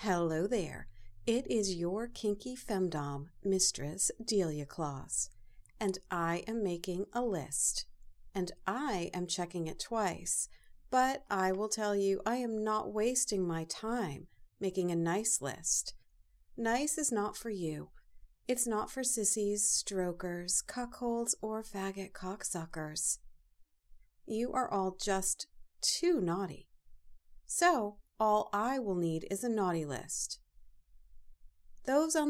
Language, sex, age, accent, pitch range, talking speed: English, female, 50-69, American, 145-215 Hz, 125 wpm